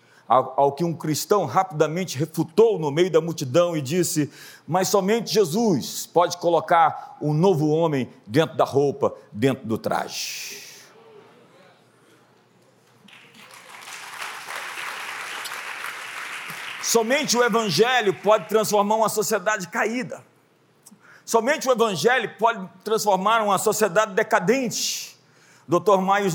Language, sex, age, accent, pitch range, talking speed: Portuguese, male, 50-69, Brazilian, 140-215 Hz, 100 wpm